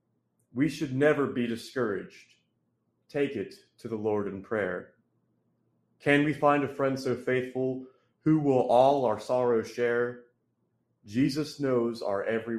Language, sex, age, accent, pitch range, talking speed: English, male, 30-49, American, 110-135 Hz, 140 wpm